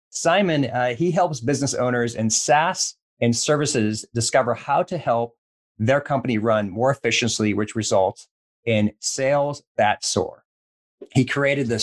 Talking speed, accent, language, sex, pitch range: 140 wpm, American, English, male, 110-145 Hz